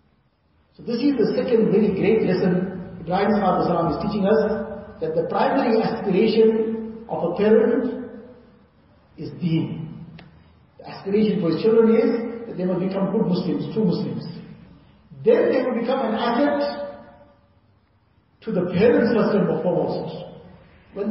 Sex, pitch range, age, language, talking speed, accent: male, 175-225 Hz, 50-69, English, 140 wpm, Indian